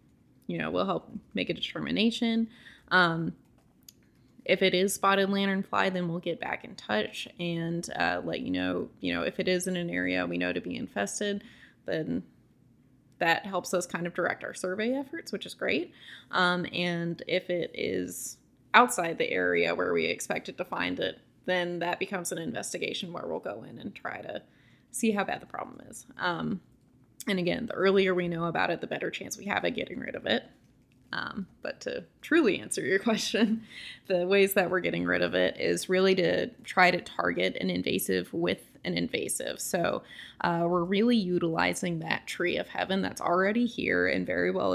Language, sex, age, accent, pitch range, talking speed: English, female, 20-39, American, 165-200 Hz, 190 wpm